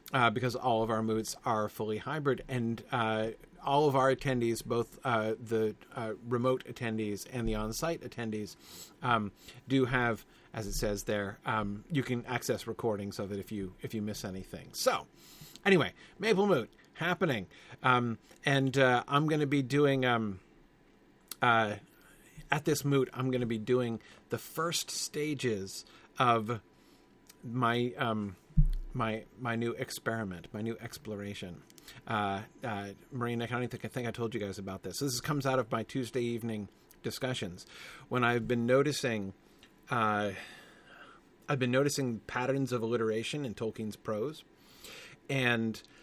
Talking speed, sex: 155 wpm, male